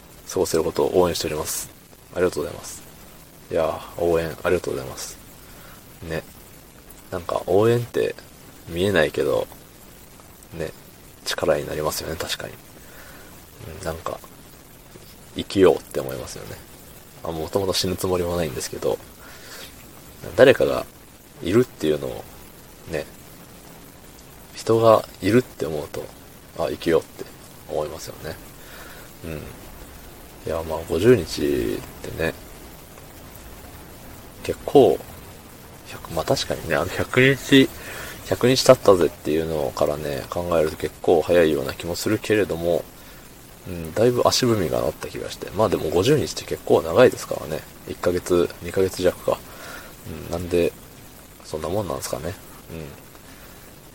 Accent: native